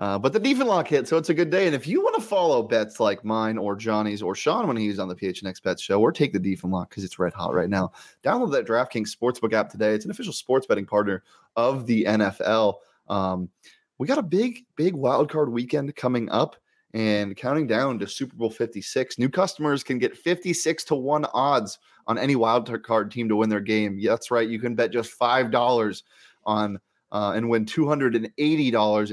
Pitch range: 105-125 Hz